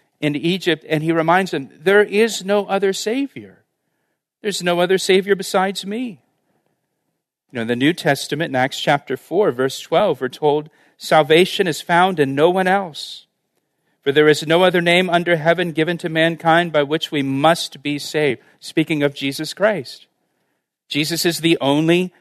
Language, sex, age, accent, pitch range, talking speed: English, male, 50-69, American, 145-180 Hz, 170 wpm